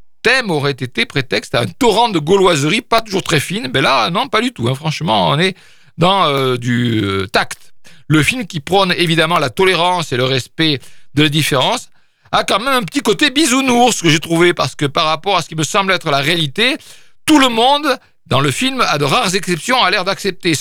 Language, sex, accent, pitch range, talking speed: French, male, French, 150-215 Hz, 225 wpm